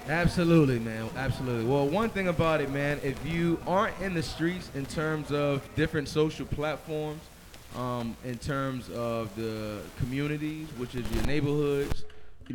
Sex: male